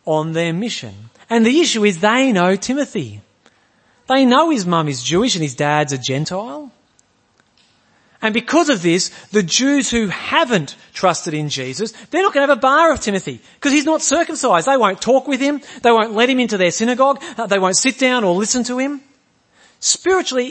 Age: 40-59